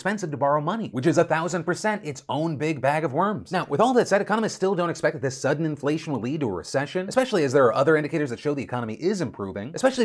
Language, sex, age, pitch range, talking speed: English, male, 30-49, 135-185 Hz, 275 wpm